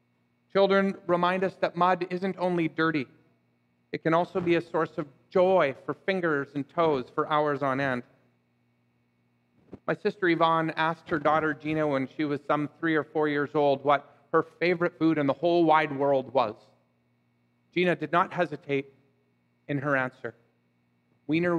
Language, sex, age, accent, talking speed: English, male, 40-59, American, 160 wpm